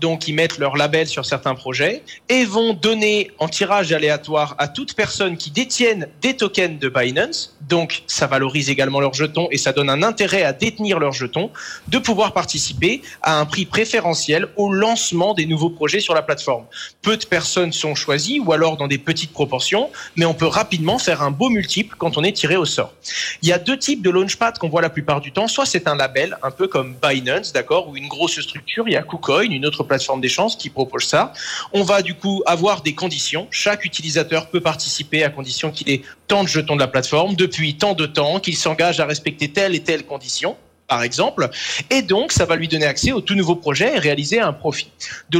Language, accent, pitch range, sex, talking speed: French, French, 150-205 Hz, male, 220 wpm